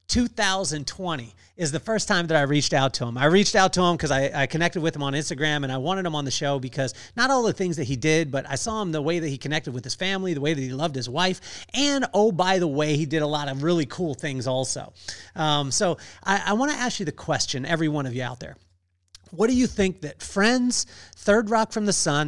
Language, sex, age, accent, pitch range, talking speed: English, male, 40-59, American, 140-195 Hz, 265 wpm